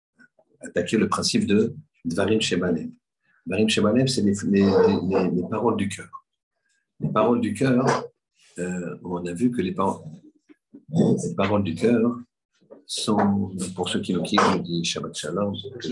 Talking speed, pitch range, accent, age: 145 wpm, 90-125 Hz, French, 50-69